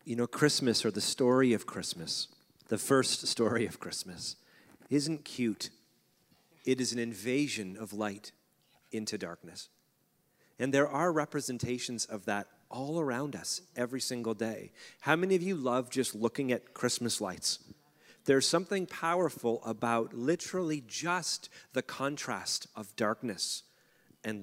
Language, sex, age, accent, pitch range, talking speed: English, male, 40-59, American, 115-160 Hz, 140 wpm